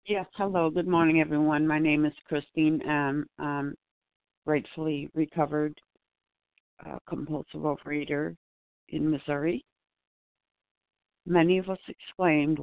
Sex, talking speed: female, 105 wpm